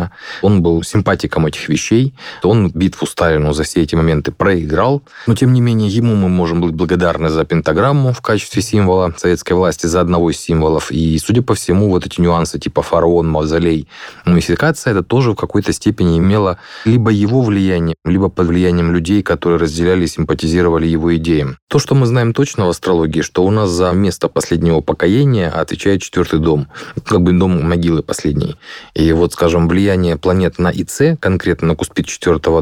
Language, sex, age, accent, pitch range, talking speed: Russian, male, 20-39, native, 85-105 Hz, 175 wpm